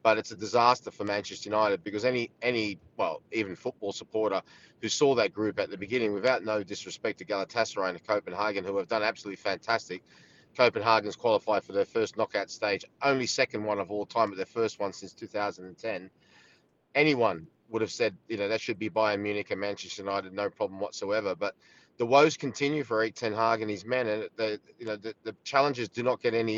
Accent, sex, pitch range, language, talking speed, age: Australian, male, 105-130 Hz, English, 215 wpm, 30-49